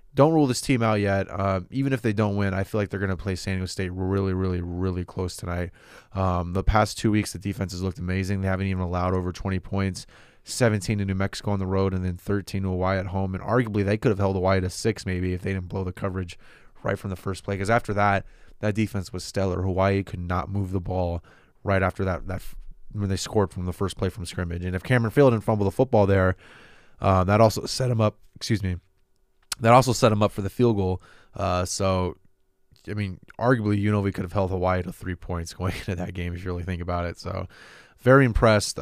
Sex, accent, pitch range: male, American, 90-105 Hz